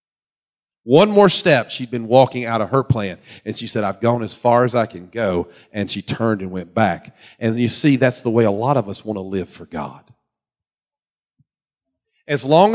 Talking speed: 205 wpm